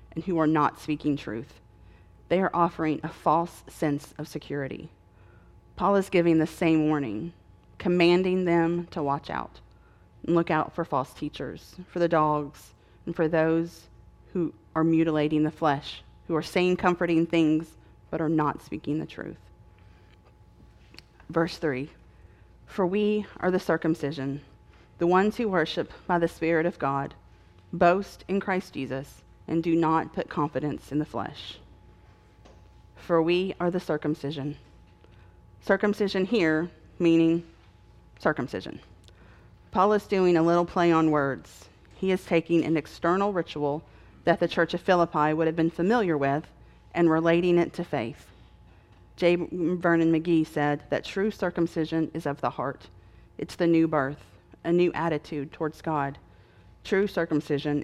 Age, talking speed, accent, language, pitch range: 30-49, 145 wpm, American, English, 140-170 Hz